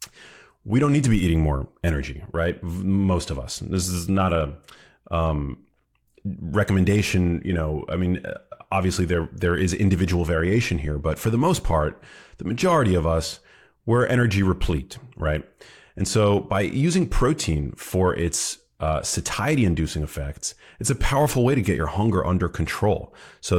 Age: 30-49